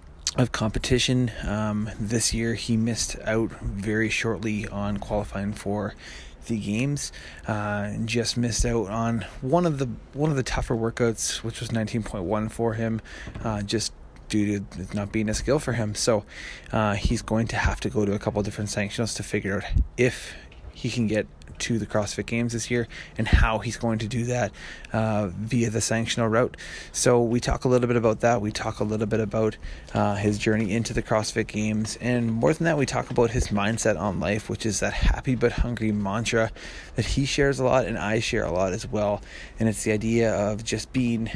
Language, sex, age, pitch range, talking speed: English, male, 20-39, 105-115 Hz, 205 wpm